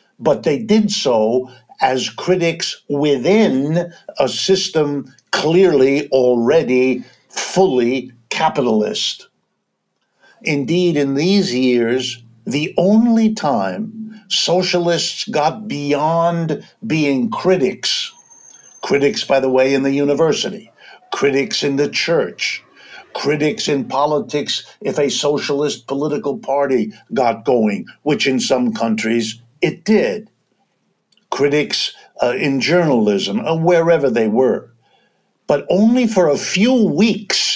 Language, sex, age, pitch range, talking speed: English, male, 60-79, 130-185 Hz, 105 wpm